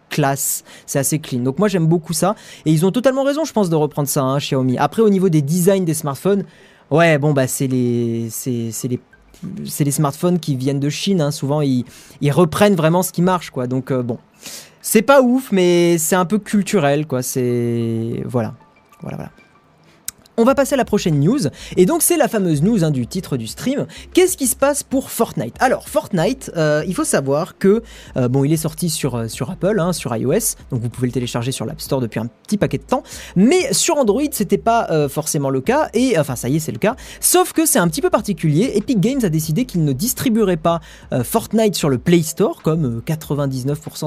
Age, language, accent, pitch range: 20-39, French, French, 140-210 Hz